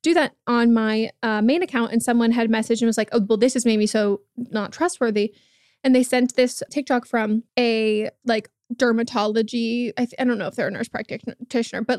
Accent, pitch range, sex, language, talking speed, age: American, 220-255 Hz, female, English, 215 wpm, 20-39